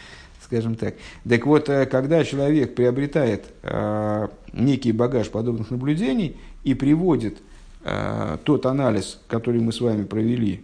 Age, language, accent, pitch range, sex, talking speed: 50-69, Russian, native, 105-130 Hz, male, 125 wpm